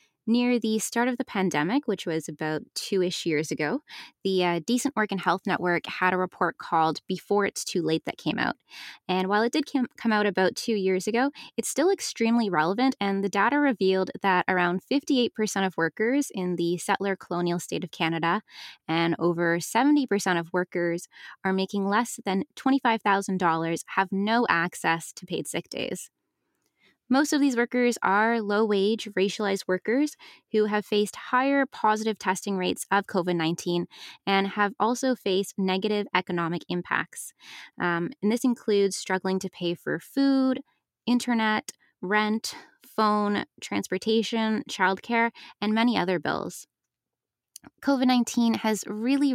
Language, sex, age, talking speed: English, female, 20-39, 150 wpm